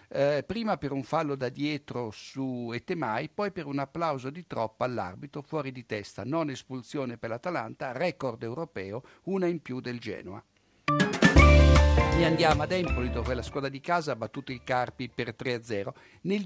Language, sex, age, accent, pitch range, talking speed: Italian, male, 60-79, native, 120-160 Hz, 170 wpm